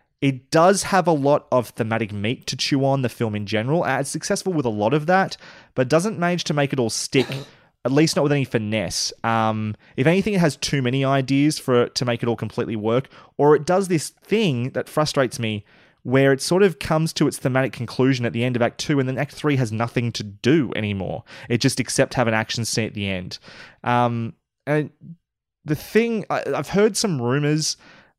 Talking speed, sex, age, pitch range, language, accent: 215 wpm, male, 20-39, 115-155 Hz, English, Australian